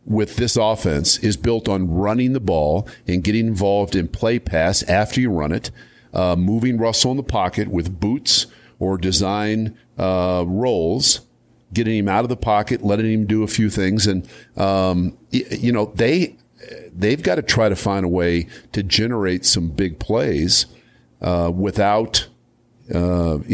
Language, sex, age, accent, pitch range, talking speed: English, male, 50-69, American, 90-110 Hz, 165 wpm